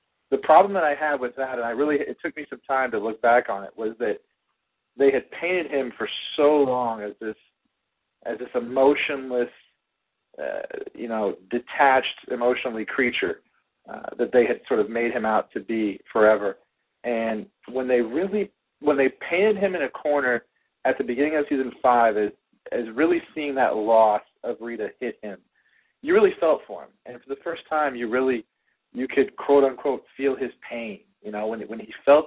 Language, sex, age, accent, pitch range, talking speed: English, male, 40-59, American, 115-145 Hz, 195 wpm